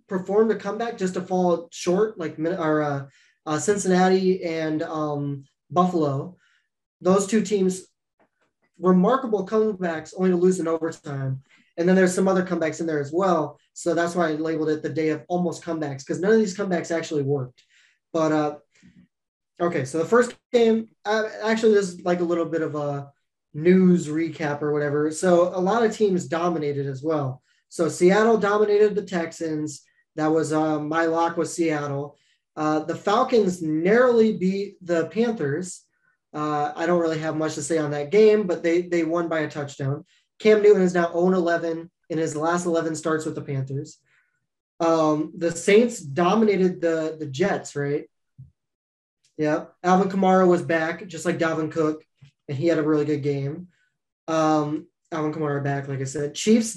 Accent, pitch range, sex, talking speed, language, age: American, 155-185 Hz, male, 175 wpm, English, 20-39